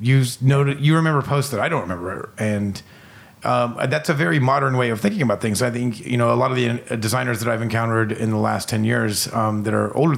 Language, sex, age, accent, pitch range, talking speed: English, male, 40-59, American, 110-125 Hz, 235 wpm